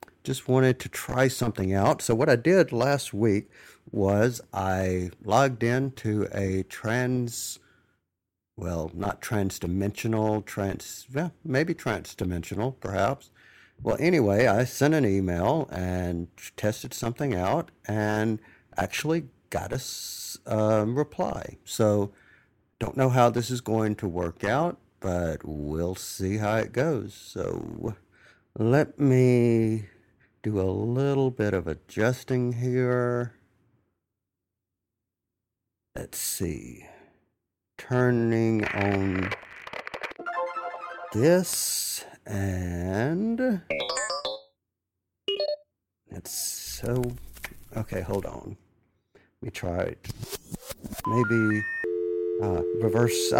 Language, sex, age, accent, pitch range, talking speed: English, male, 50-69, American, 95-125 Hz, 95 wpm